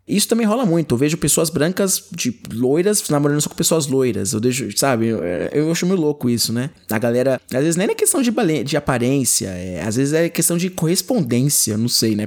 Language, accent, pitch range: Portuguese, Brazilian, 120-170 Hz